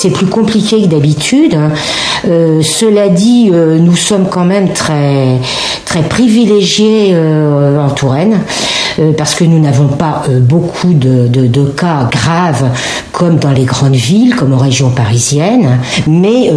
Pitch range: 135-175 Hz